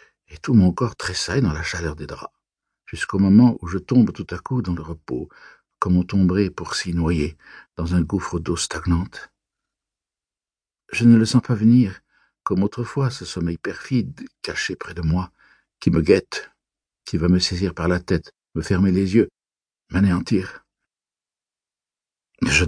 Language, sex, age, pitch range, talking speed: French, male, 60-79, 90-120 Hz, 165 wpm